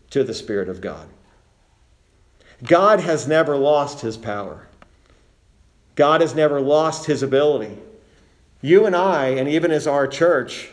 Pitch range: 105-145 Hz